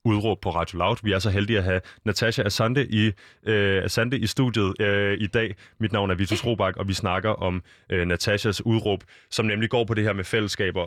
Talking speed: 215 wpm